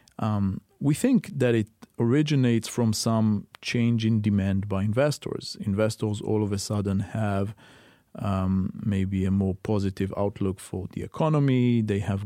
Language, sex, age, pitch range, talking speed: English, male, 40-59, 100-115 Hz, 145 wpm